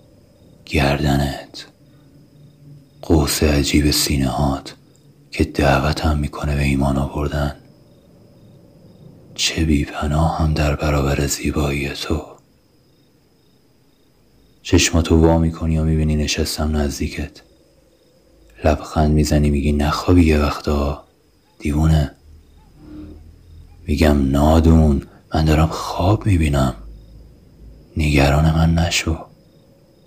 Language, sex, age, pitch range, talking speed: Persian, male, 30-49, 75-80 Hz, 80 wpm